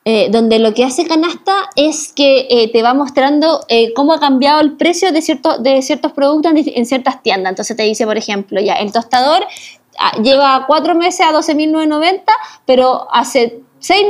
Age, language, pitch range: 20-39, Spanish, 230-305 Hz